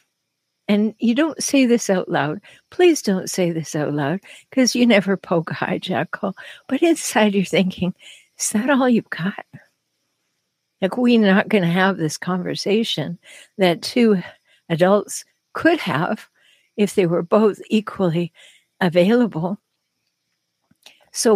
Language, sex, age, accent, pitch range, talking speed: English, female, 60-79, American, 190-240 Hz, 135 wpm